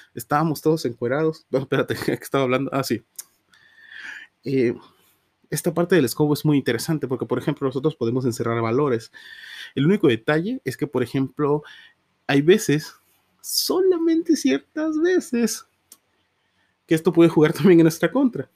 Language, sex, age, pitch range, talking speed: Spanish, male, 30-49, 130-165 Hz, 145 wpm